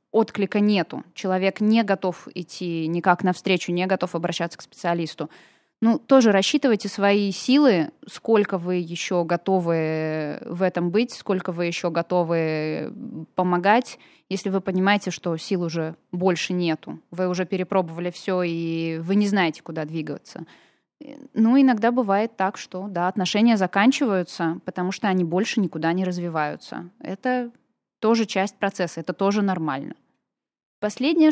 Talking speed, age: 135 wpm, 20-39